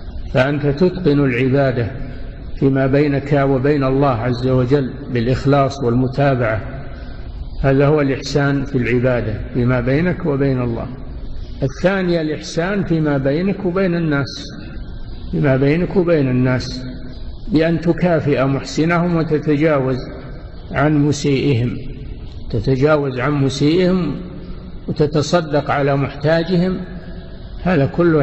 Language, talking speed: Arabic, 95 wpm